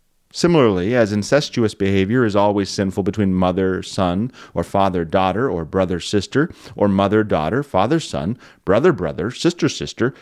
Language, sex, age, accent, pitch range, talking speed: English, male, 30-49, American, 95-130 Hz, 145 wpm